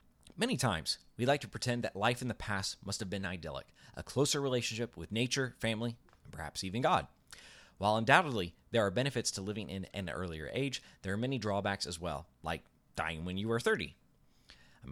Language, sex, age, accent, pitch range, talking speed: English, male, 30-49, American, 85-120 Hz, 195 wpm